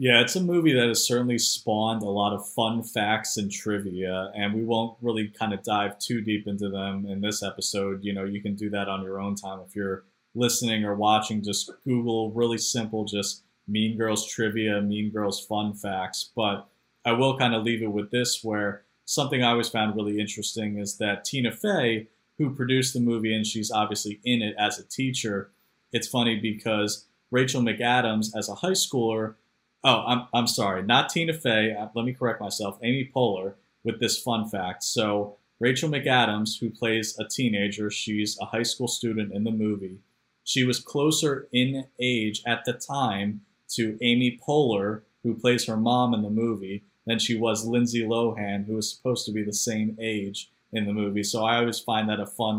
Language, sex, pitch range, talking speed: English, male, 105-120 Hz, 195 wpm